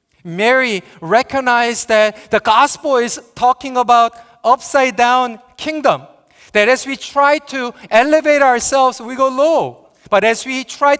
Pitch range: 180-255 Hz